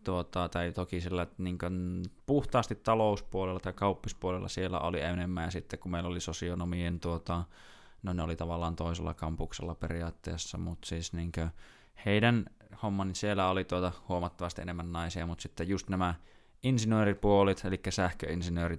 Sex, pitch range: male, 85-100 Hz